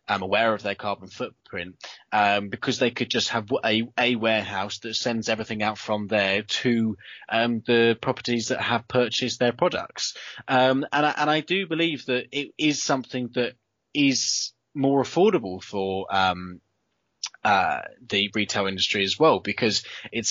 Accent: British